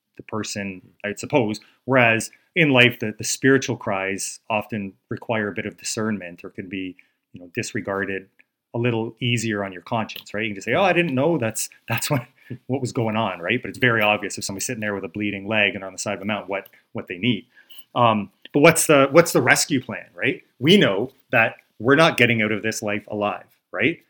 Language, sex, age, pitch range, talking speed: English, male, 30-49, 105-125 Hz, 220 wpm